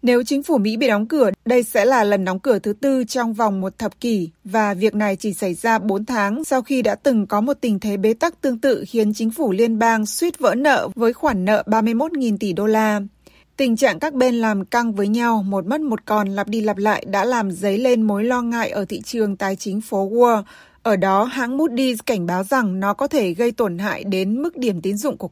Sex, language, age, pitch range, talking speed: female, Vietnamese, 20-39, 200-250 Hz, 245 wpm